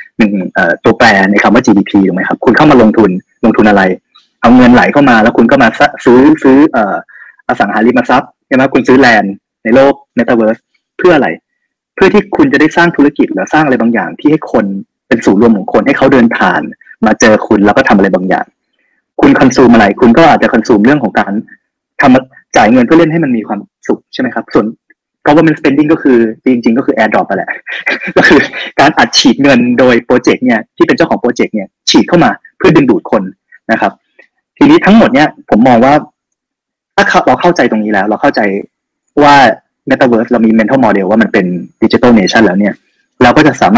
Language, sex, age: Thai, male, 20-39